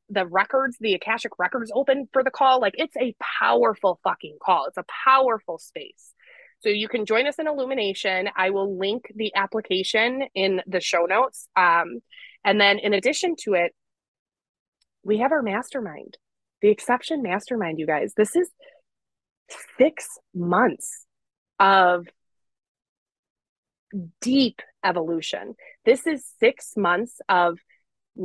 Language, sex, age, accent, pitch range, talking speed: English, female, 20-39, American, 190-255 Hz, 135 wpm